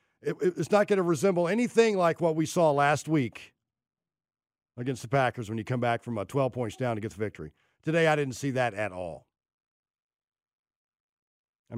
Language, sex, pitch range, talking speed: English, male, 125-160 Hz, 190 wpm